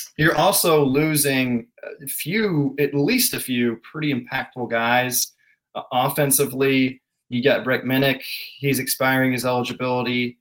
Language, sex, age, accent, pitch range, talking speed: English, male, 20-39, American, 120-150 Hz, 125 wpm